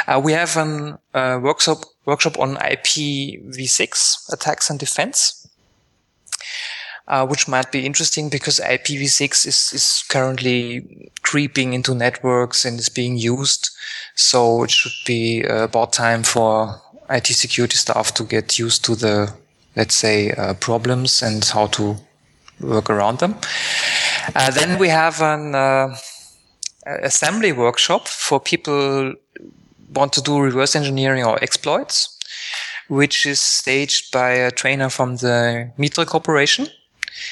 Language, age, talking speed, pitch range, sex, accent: English, 20-39, 130 wpm, 120-150 Hz, male, German